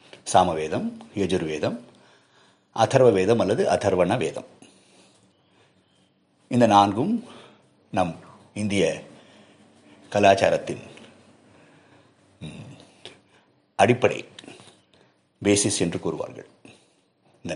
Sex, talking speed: male, 60 wpm